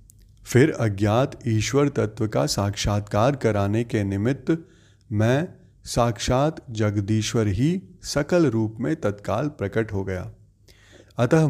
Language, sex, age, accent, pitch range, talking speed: Hindi, male, 30-49, native, 105-140 Hz, 110 wpm